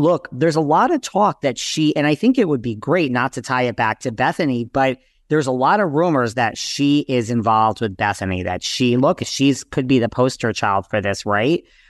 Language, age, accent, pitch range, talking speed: English, 40-59, American, 115-145 Hz, 230 wpm